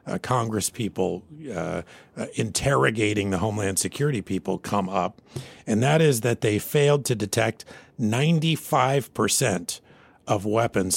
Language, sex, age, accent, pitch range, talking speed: English, male, 50-69, American, 100-145 Hz, 115 wpm